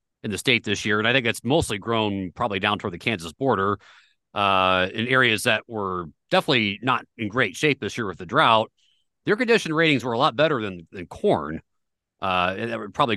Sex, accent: male, American